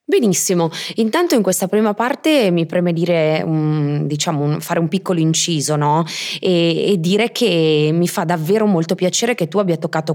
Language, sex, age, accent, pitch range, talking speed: Italian, female, 20-39, native, 155-195 Hz, 165 wpm